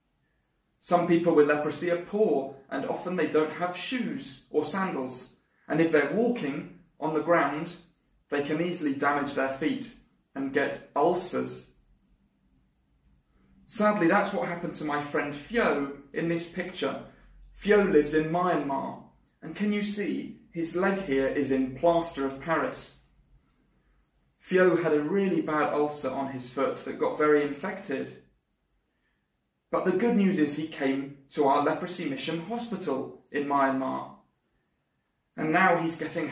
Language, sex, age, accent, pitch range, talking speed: English, male, 30-49, British, 135-180 Hz, 145 wpm